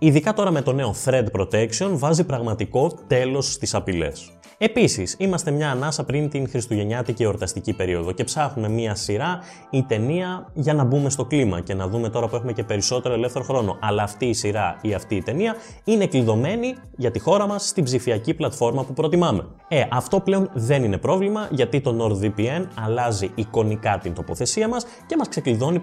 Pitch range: 100-150 Hz